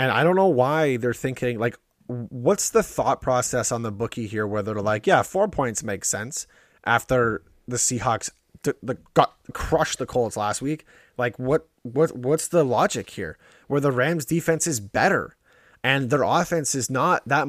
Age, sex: 20-39, male